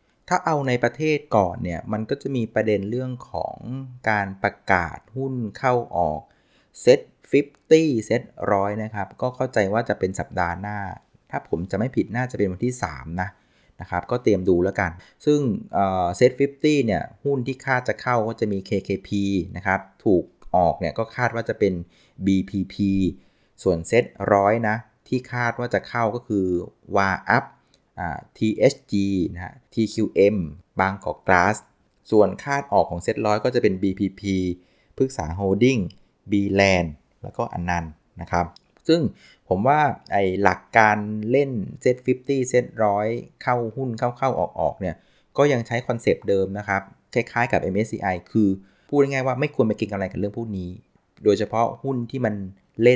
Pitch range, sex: 95-125 Hz, male